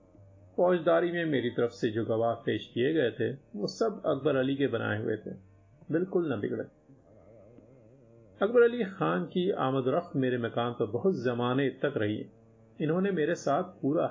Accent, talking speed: native, 165 wpm